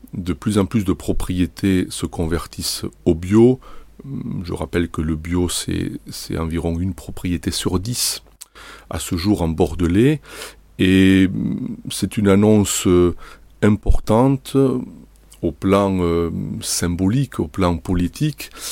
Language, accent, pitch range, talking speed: French, French, 85-105 Hz, 120 wpm